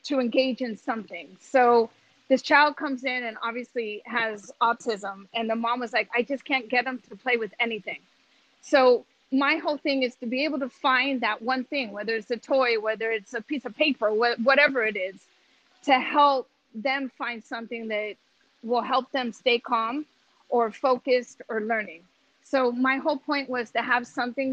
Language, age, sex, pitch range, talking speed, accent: English, 30-49, female, 225-265 Hz, 185 wpm, American